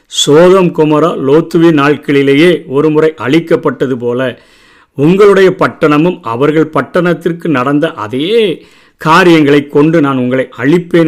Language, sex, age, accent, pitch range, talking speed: Tamil, male, 50-69, native, 135-170 Hz, 95 wpm